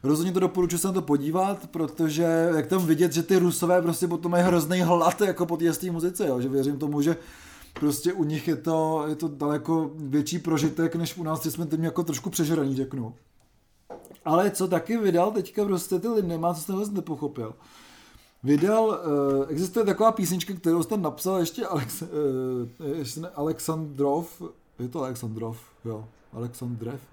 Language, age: Czech, 20-39